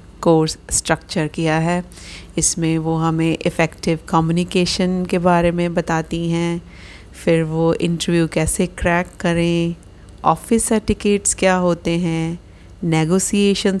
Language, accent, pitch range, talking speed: Hindi, native, 155-180 Hz, 115 wpm